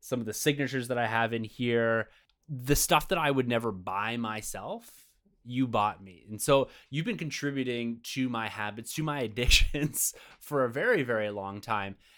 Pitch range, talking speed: 105-130 Hz, 180 wpm